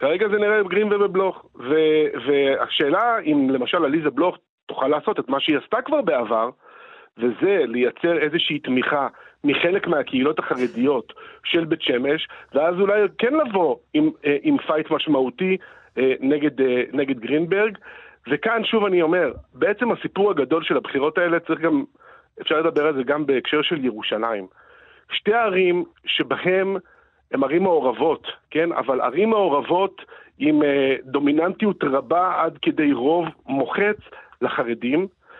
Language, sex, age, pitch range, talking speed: Hebrew, male, 40-59, 145-220 Hz, 130 wpm